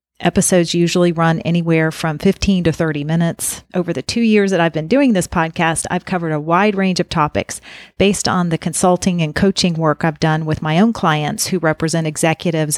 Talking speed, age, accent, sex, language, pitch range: 195 wpm, 40-59, American, female, English, 160-195 Hz